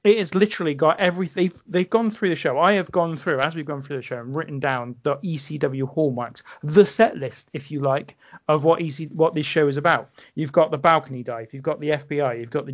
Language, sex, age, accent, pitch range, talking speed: English, male, 40-59, British, 140-170 Hz, 250 wpm